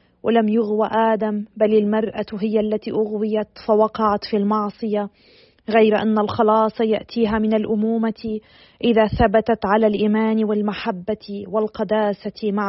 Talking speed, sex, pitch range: 115 wpm, female, 215-230 Hz